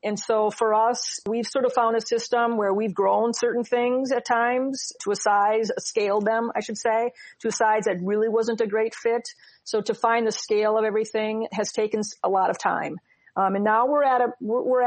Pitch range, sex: 200-225 Hz, female